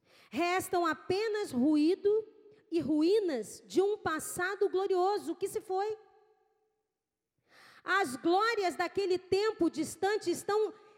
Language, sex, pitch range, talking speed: Portuguese, female, 310-420 Hz, 100 wpm